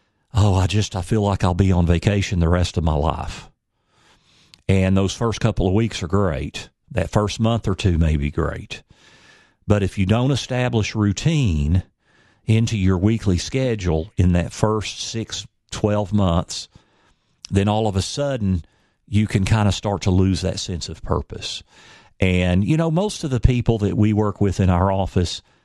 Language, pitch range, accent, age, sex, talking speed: English, 90-115 Hz, American, 50-69, male, 180 wpm